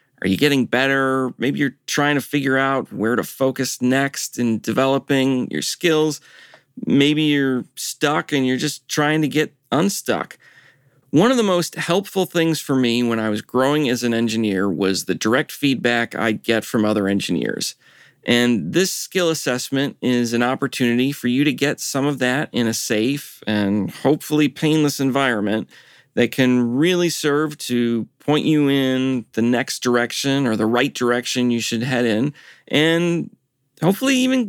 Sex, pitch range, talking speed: male, 125-160 Hz, 165 wpm